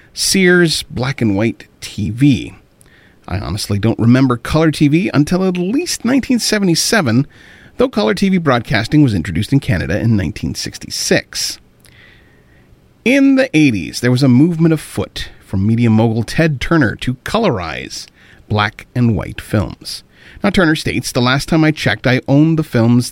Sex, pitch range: male, 115-175 Hz